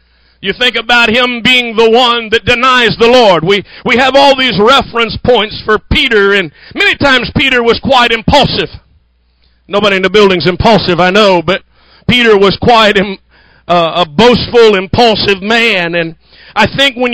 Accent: American